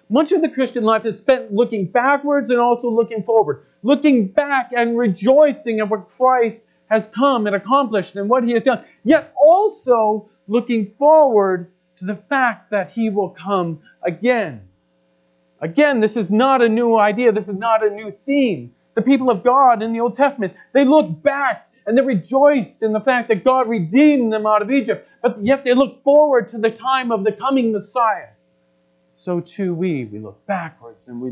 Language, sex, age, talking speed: English, male, 40-59, 190 wpm